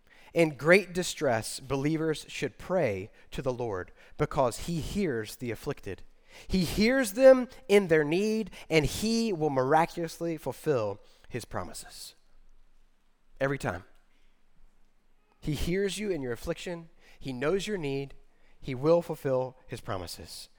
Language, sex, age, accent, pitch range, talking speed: English, male, 30-49, American, 135-225 Hz, 130 wpm